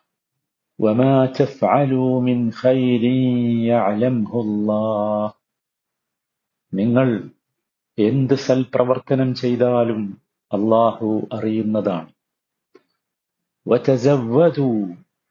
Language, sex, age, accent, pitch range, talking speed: Malayalam, male, 50-69, native, 110-130 Hz, 55 wpm